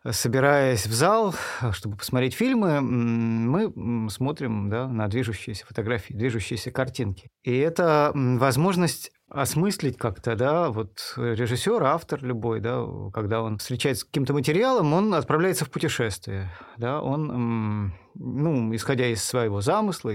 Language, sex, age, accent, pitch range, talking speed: Russian, male, 30-49, native, 115-150 Hz, 125 wpm